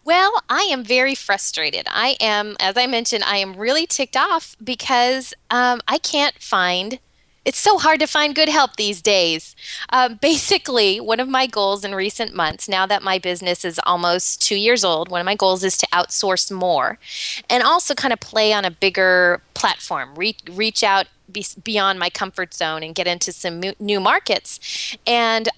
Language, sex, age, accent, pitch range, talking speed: English, female, 20-39, American, 185-245 Hz, 180 wpm